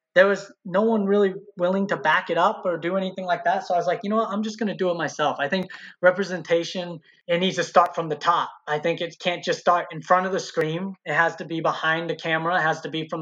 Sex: male